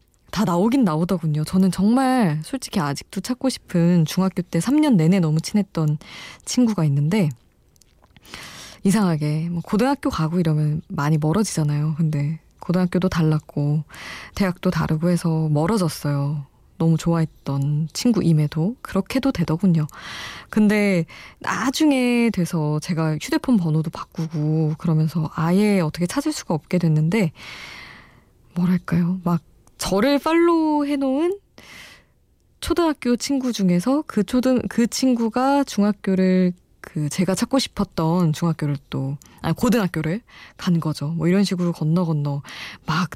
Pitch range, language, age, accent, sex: 155-210 Hz, Korean, 20-39, native, female